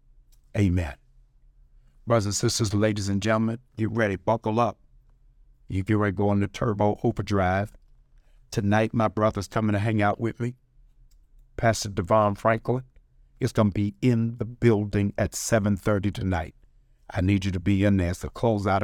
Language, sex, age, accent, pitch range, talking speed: English, male, 50-69, American, 95-115 Hz, 160 wpm